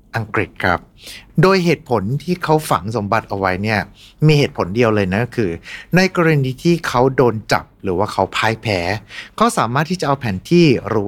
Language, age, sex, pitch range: Thai, 60-79, male, 95-135 Hz